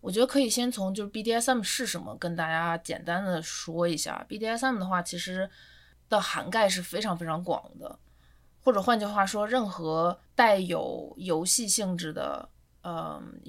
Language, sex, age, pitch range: Chinese, female, 20-39, 165-200 Hz